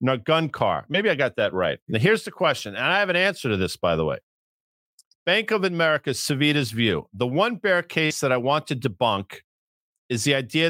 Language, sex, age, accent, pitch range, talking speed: English, male, 50-69, American, 145-195 Hz, 220 wpm